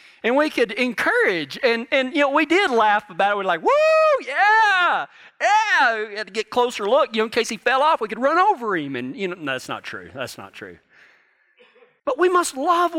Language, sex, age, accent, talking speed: English, male, 40-59, American, 235 wpm